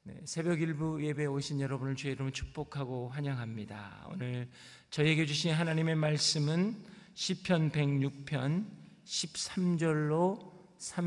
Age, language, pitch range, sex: 40-59, Korean, 125-165 Hz, male